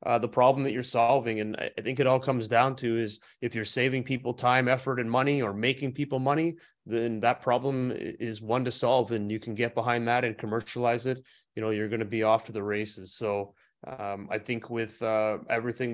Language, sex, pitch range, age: English, male, 110-130 Hz, 30-49